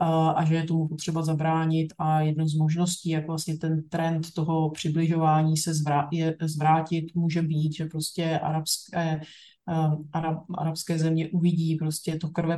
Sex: male